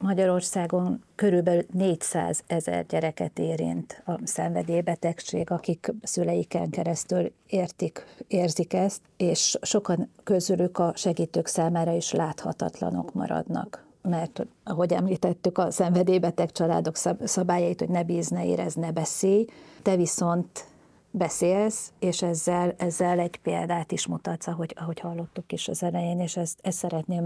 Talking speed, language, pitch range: 125 wpm, Hungarian, 170-185 Hz